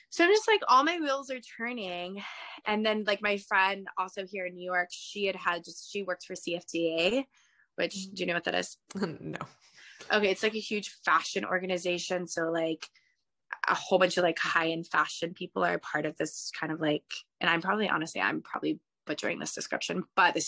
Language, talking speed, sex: English, 205 wpm, female